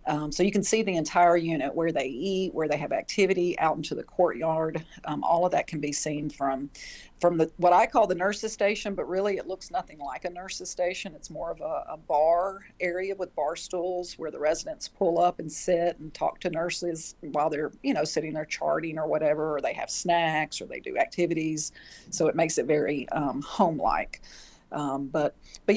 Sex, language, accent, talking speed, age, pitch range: female, English, American, 215 wpm, 40-59, 150-175 Hz